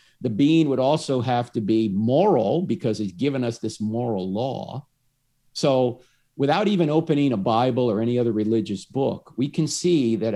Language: English